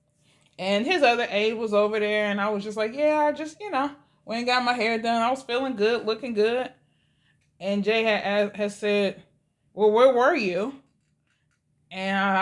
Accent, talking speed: American, 190 wpm